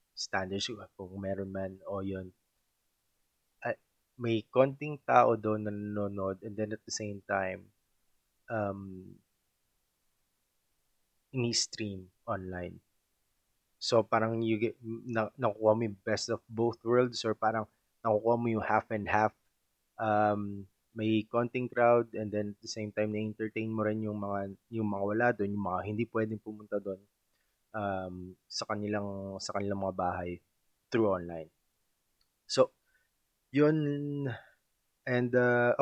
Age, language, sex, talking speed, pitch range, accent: 20-39, Filipino, male, 135 wpm, 95-115 Hz, native